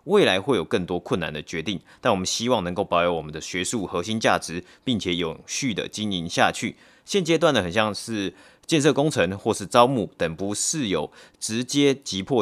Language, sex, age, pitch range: Chinese, male, 30-49, 90-115 Hz